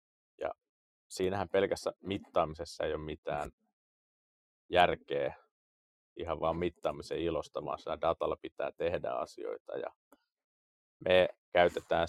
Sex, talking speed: male, 90 wpm